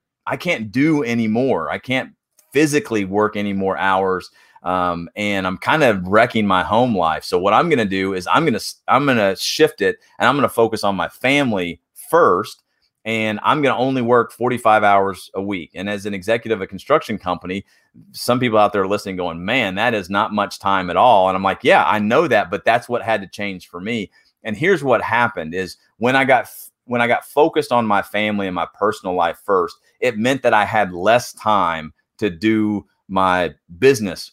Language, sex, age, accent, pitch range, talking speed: English, male, 30-49, American, 95-120 Hz, 215 wpm